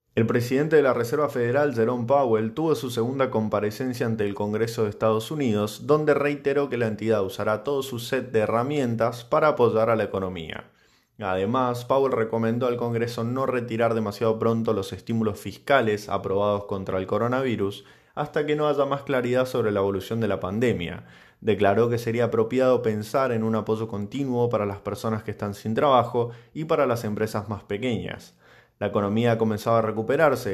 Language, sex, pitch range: Spanish, male, 105-130 Hz